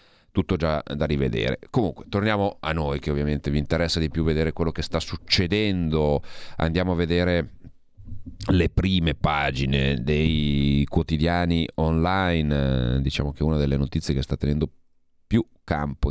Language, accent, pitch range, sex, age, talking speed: Italian, native, 70-80 Hz, male, 40-59, 140 wpm